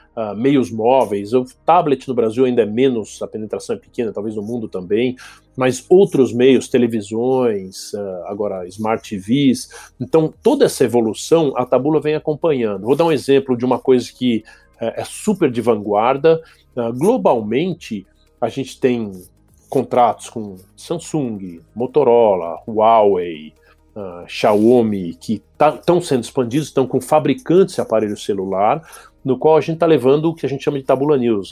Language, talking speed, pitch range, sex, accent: Portuguese, 150 wpm, 110-140 Hz, male, Brazilian